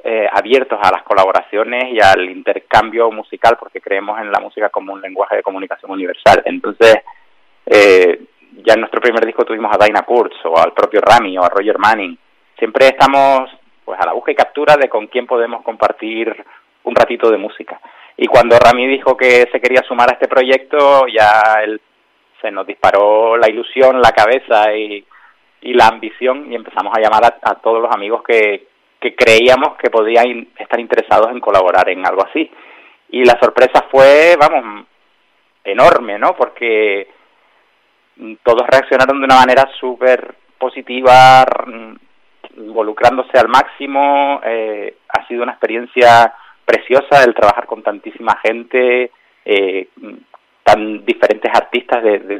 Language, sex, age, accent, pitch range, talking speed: Spanish, male, 30-49, Spanish, 115-140 Hz, 155 wpm